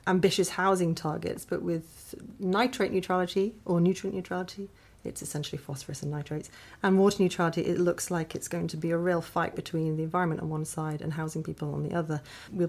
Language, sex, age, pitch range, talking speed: English, female, 30-49, 160-195 Hz, 195 wpm